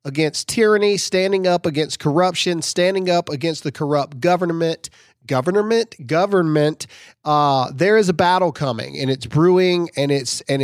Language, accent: English, American